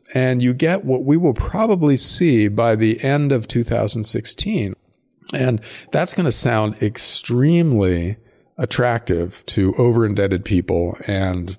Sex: male